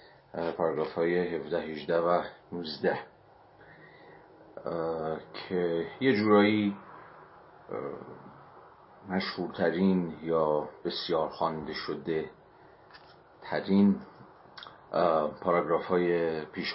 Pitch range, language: 80-95 Hz, Persian